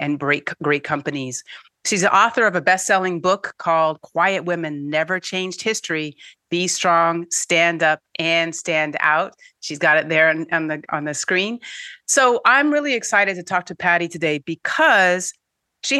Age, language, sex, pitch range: 40-59, English, female, 150-185 Hz